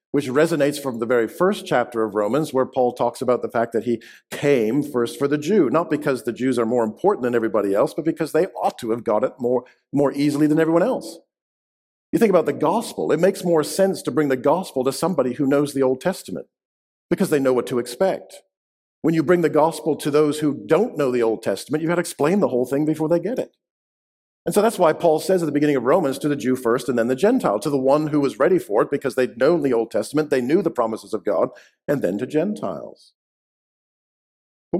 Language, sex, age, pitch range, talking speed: English, male, 50-69, 120-160 Hz, 240 wpm